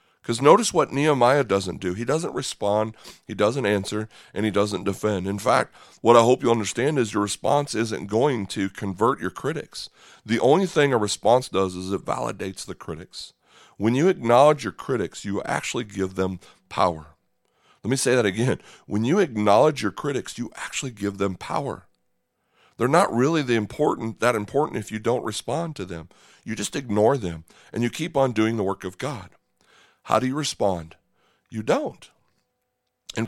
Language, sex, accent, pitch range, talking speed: English, male, American, 100-130 Hz, 180 wpm